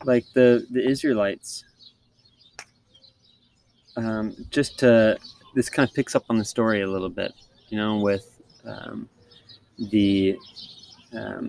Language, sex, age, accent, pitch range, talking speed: English, male, 20-39, American, 100-120 Hz, 125 wpm